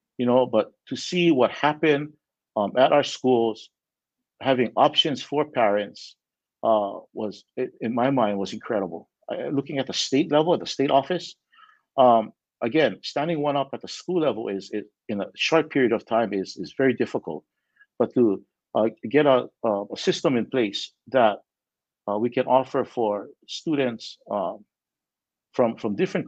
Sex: male